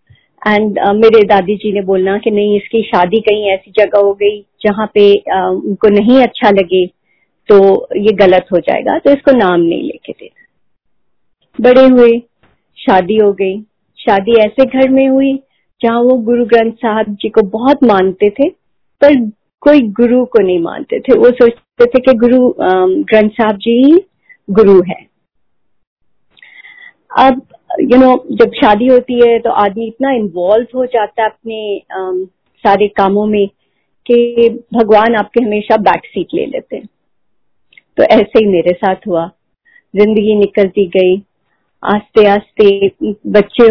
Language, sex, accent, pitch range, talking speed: Hindi, female, native, 205-265 Hz, 155 wpm